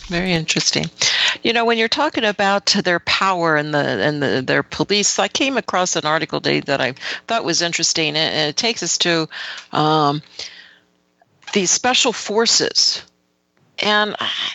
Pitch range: 155-195 Hz